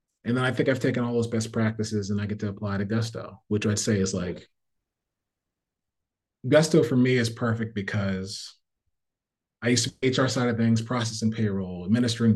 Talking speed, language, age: 185 wpm, English, 30-49